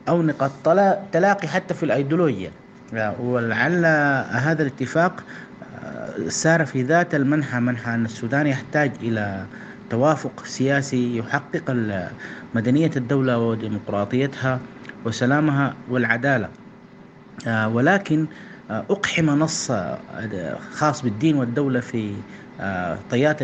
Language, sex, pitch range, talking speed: English, male, 125-165 Hz, 85 wpm